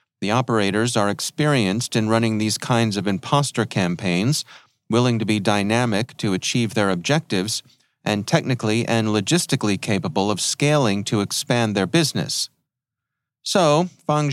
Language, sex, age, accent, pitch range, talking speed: English, male, 40-59, American, 110-135 Hz, 135 wpm